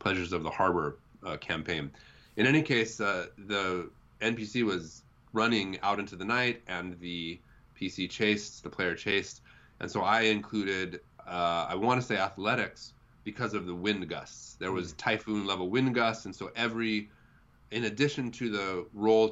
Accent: American